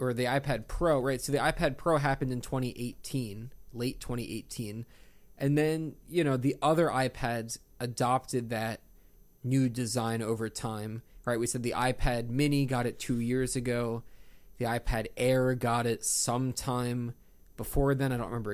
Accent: American